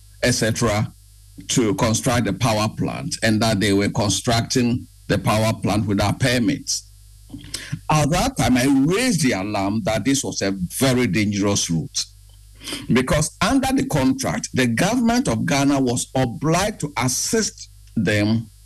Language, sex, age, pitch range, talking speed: English, male, 50-69, 100-135 Hz, 140 wpm